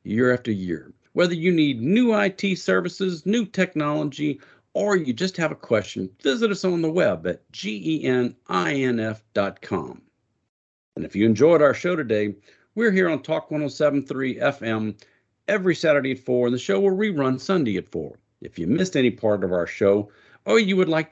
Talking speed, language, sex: 175 wpm, English, male